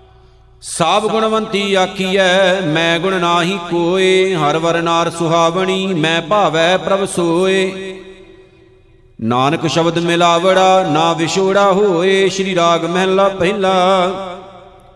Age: 50-69